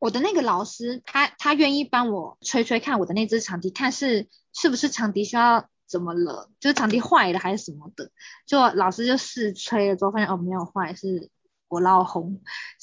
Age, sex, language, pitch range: 20-39, female, Chinese, 190-270 Hz